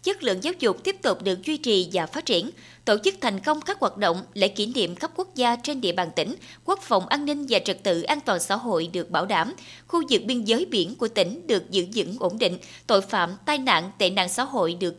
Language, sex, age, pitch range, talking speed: Vietnamese, female, 20-39, 190-295 Hz, 255 wpm